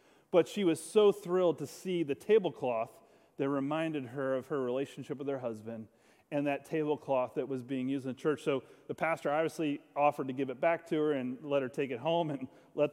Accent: American